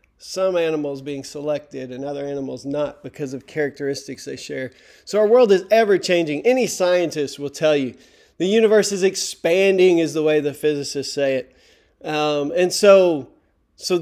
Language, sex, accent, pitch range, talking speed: English, male, American, 145-185 Hz, 165 wpm